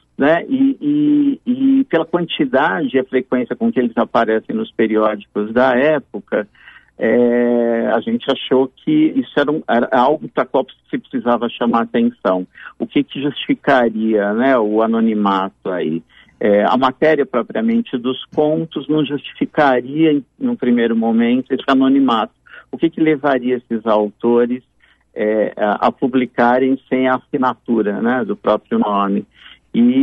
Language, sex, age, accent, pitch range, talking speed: Portuguese, male, 50-69, Brazilian, 110-140 Hz, 145 wpm